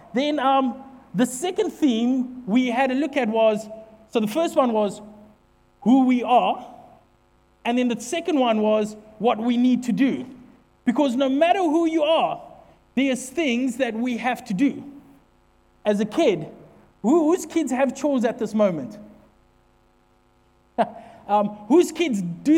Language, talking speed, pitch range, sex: English, 150 wpm, 215-280 Hz, male